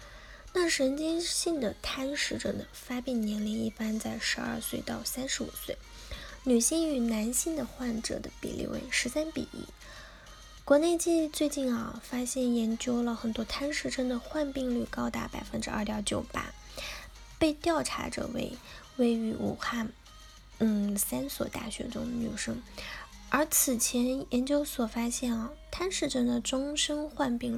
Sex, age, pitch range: female, 10-29, 225-290 Hz